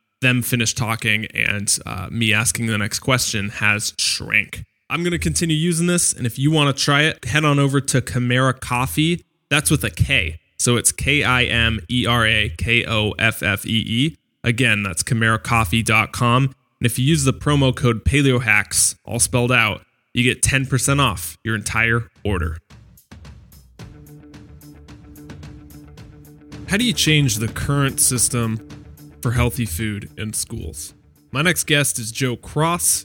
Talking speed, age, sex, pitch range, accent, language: 140 wpm, 20-39, male, 105-130 Hz, American, English